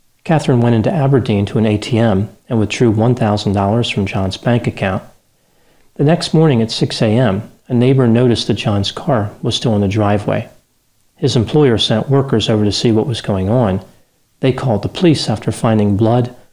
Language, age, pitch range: English, 40-59, 105-130 Hz